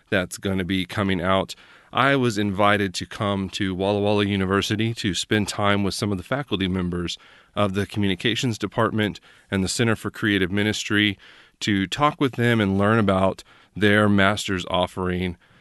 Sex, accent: male, American